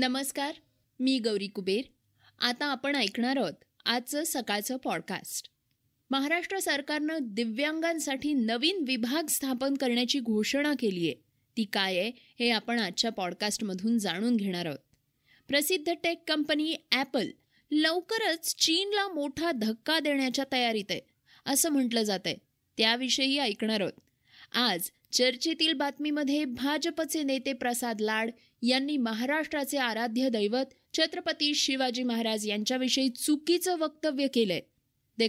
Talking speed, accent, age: 115 wpm, native, 20-39